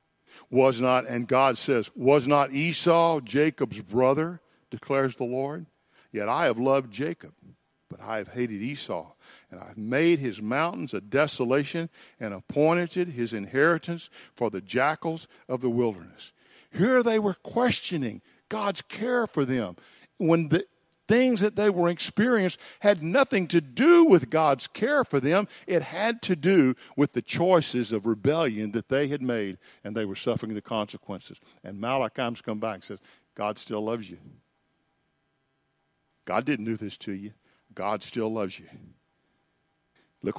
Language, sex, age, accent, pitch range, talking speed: English, male, 50-69, American, 115-170 Hz, 155 wpm